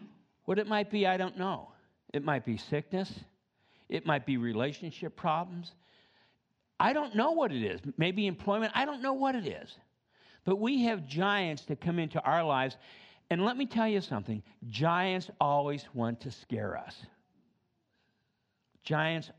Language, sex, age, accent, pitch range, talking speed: English, male, 60-79, American, 120-175 Hz, 160 wpm